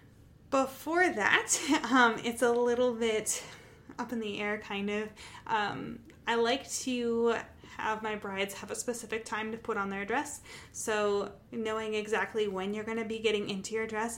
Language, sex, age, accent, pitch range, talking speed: English, female, 20-39, American, 205-245 Hz, 175 wpm